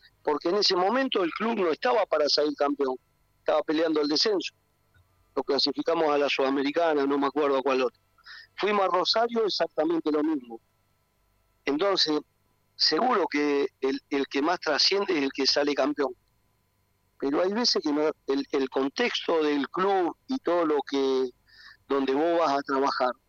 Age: 50-69